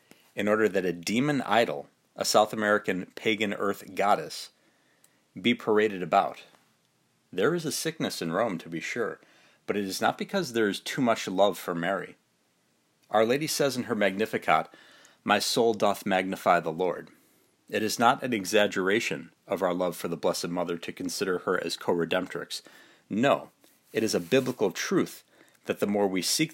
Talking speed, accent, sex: 170 wpm, American, male